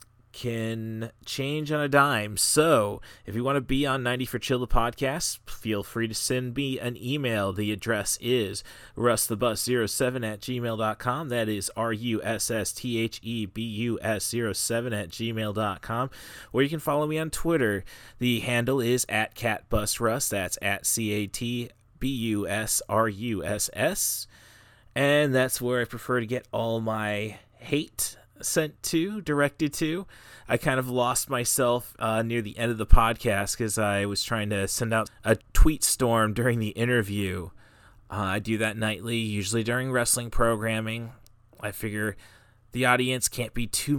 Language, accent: English, American